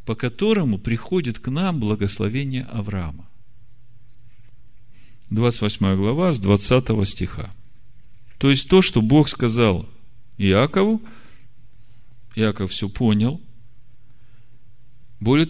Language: Russian